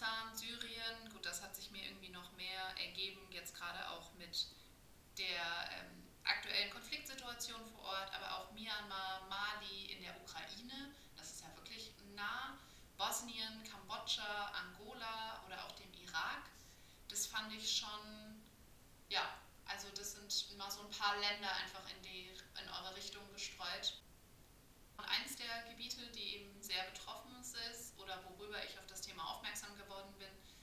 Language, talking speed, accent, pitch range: German, 150 wpm, German, 190-220 Hz